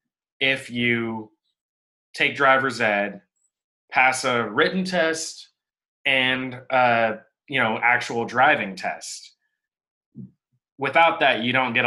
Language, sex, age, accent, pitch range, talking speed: English, male, 20-39, American, 110-135 Hz, 105 wpm